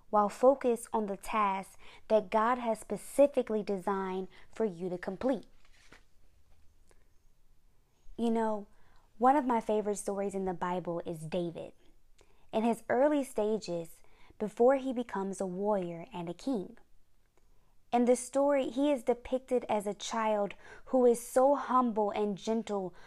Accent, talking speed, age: American, 140 wpm, 20-39